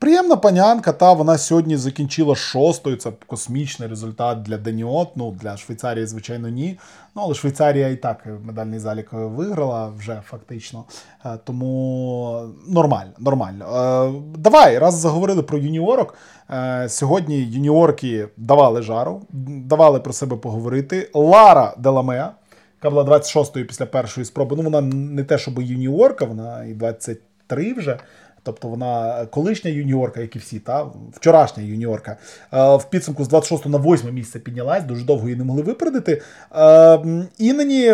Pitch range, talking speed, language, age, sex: 120-160 Hz, 145 wpm, Ukrainian, 20-39, male